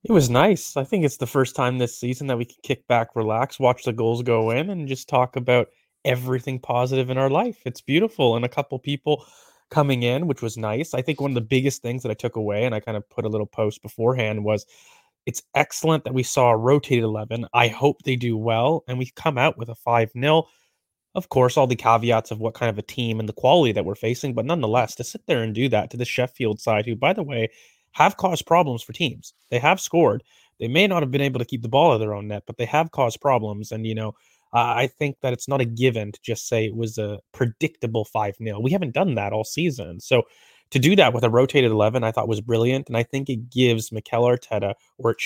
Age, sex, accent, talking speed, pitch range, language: 30-49, male, American, 250 wpm, 110-135 Hz, English